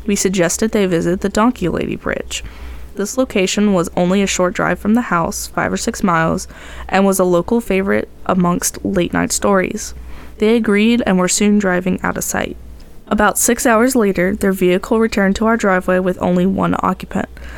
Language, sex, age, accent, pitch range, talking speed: English, female, 10-29, American, 175-210 Hz, 185 wpm